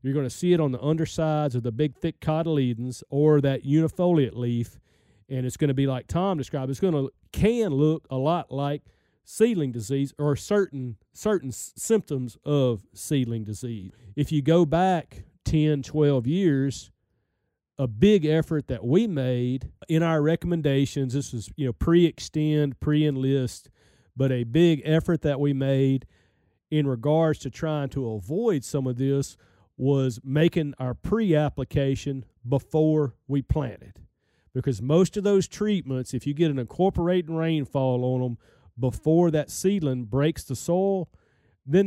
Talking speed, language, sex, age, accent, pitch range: 150 wpm, English, male, 40-59, American, 125-160 Hz